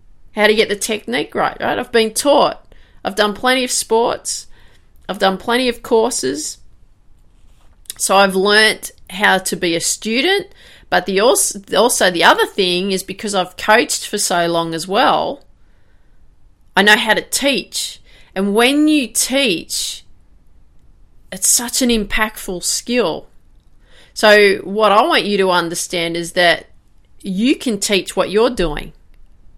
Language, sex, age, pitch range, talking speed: English, female, 30-49, 170-220 Hz, 150 wpm